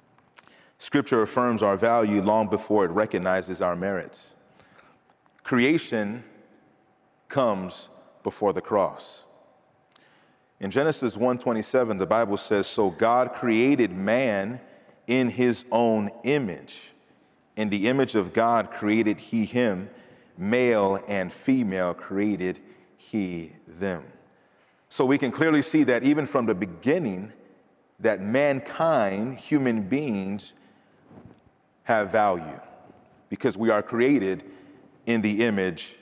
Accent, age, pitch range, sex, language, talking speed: American, 30-49, 100-135 Hz, male, English, 110 wpm